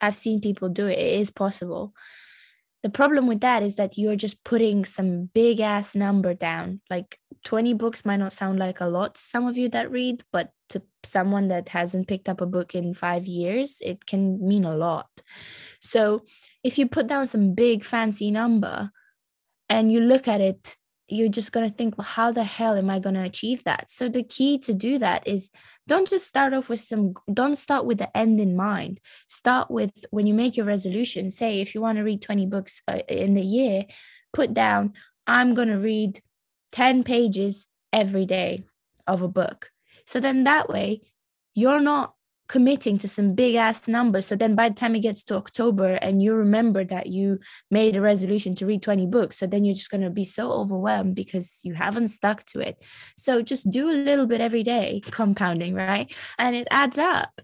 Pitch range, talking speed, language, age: 195-240 Hz, 205 wpm, English, 20-39